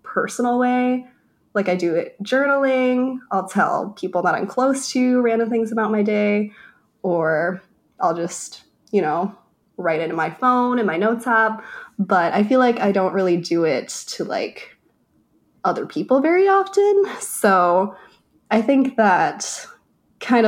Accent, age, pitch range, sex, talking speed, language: American, 20-39, 185-260 Hz, female, 155 wpm, English